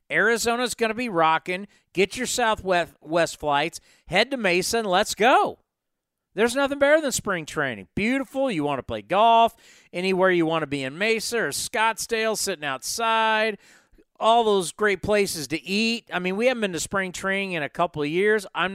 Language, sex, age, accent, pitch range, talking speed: English, male, 40-59, American, 160-225 Hz, 190 wpm